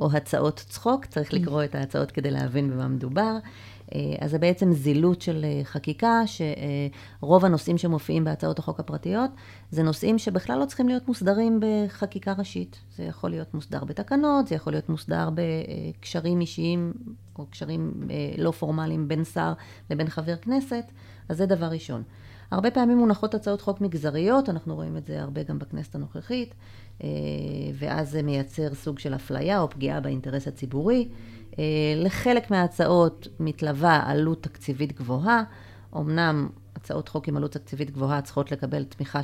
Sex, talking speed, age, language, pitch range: female, 145 wpm, 30-49, Hebrew, 135-185 Hz